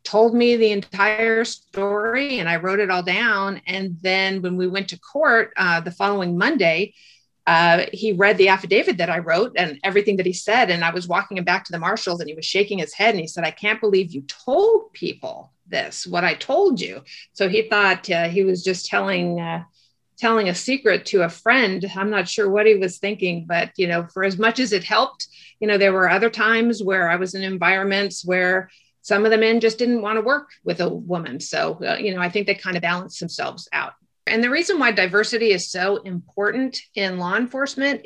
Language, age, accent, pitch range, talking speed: English, 50-69, American, 180-220 Hz, 220 wpm